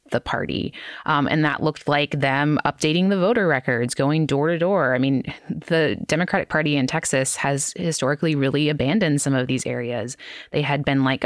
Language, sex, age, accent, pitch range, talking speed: English, female, 20-39, American, 130-155 Hz, 185 wpm